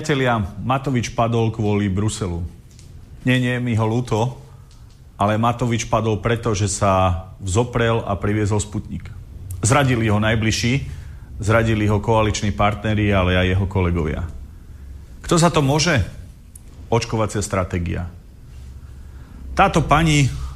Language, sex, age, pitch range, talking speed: Slovak, male, 40-59, 90-115 Hz, 110 wpm